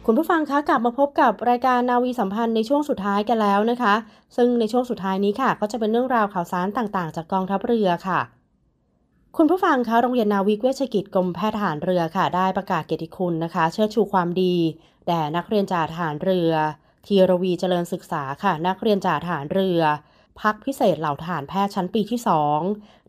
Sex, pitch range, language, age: female, 175-215 Hz, Thai, 20-39